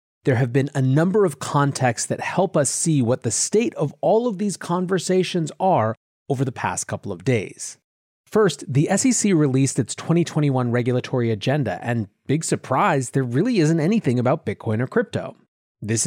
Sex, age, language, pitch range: male, 30-49, English, 125-165 Hz